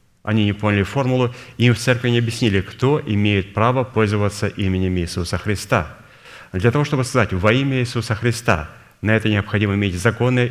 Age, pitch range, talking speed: 30-49, 100-120 Hz, 165 wpm